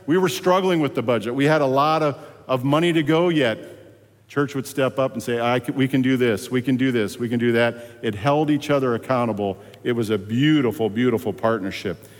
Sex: male